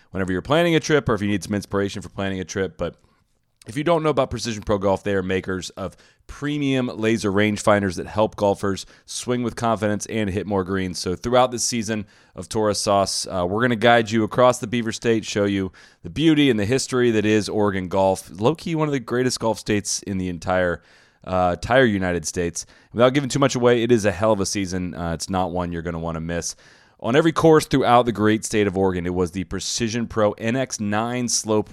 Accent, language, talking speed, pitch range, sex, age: American, English, 230 wpm, 95-120 Hz, male, 30-49